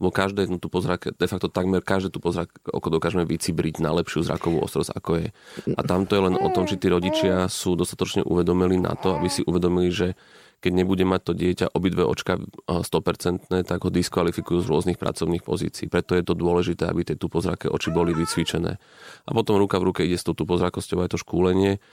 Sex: male